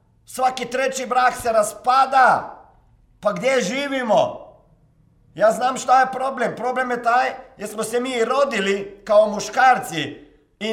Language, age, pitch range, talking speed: Croatian, 50-69, 230-275 Hz, 135 wpm